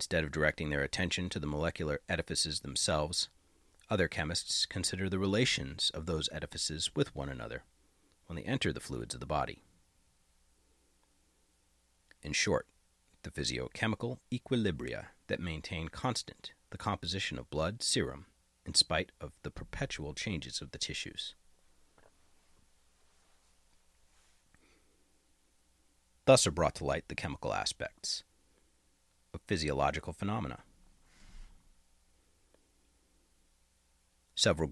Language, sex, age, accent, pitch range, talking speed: English, male, 40-59, American, 70-90 Hz, 110 wpm